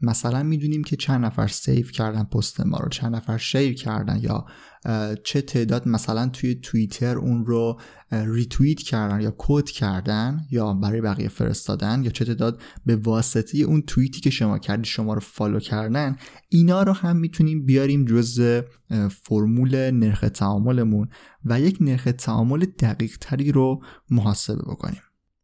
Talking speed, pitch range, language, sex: 150 wpm, 110-140 Hz, Persian, male